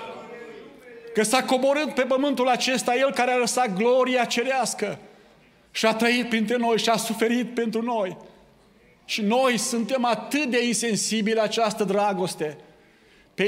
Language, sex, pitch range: Romanian, male, 205-240 Hz